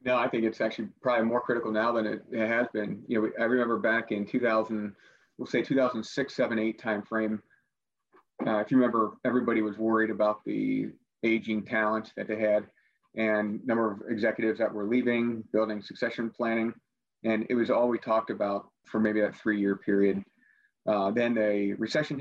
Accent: American